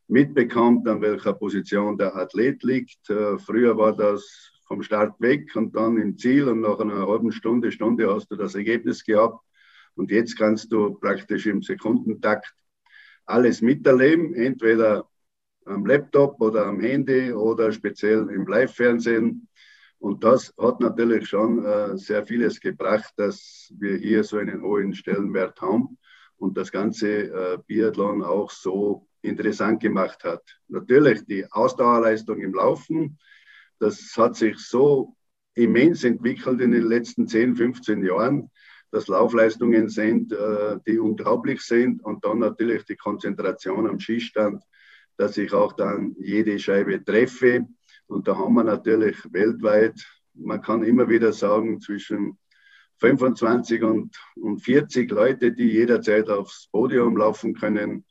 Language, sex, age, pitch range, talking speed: German, male, 50-69, 105-120 Hz, 140 wpm